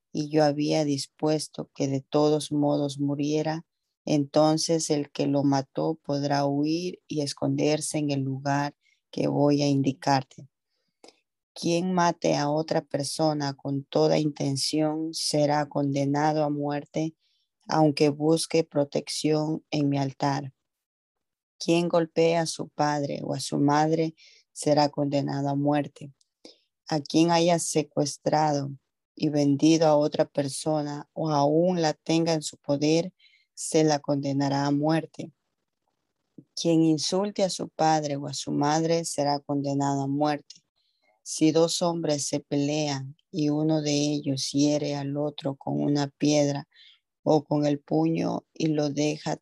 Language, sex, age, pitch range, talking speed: Spanish, female, 30-49, 145-155 Hz, 135 wpm